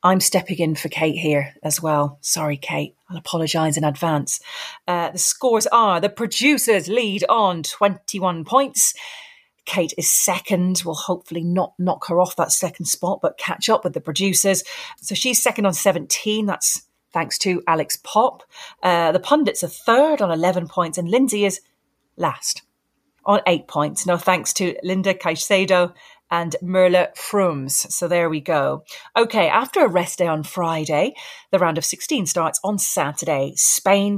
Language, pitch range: English, 165-210 Hz